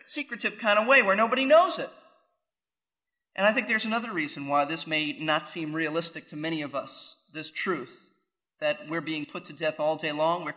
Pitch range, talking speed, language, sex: 175-255 Hz, 205 wpm, English, male